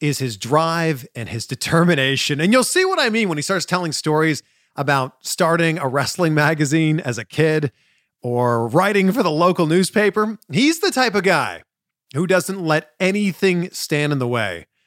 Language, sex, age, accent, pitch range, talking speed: English, male, 40-59, American, 135-195 Hz, 180 wpm